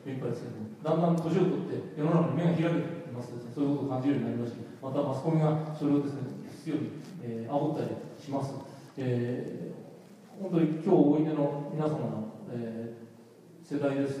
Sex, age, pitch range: male, 40-59, 125-165 Hz